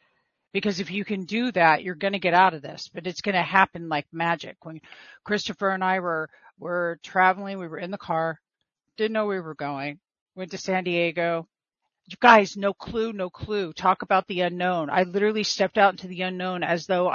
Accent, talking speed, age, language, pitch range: American, 215 wpm, 50-69, English, 180-215 Hz